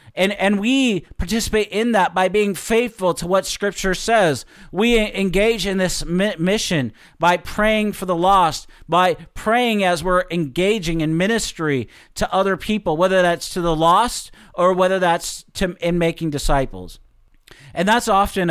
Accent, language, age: American, English, 40-59